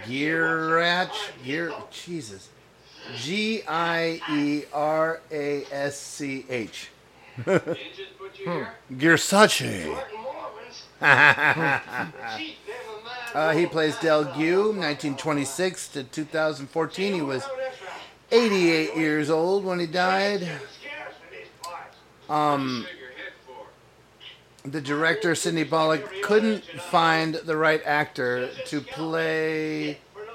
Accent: American